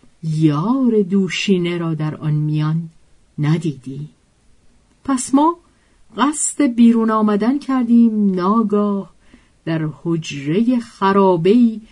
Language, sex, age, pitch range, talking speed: Persian, female, 50-69, 155-225 Hz, 85 wpm